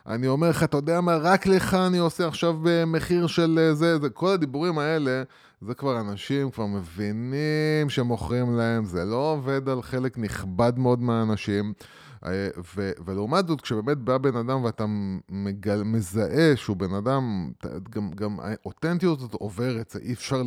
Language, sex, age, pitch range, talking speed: Hebrew, male, 20-39, 105-145 Hz, 155 wpm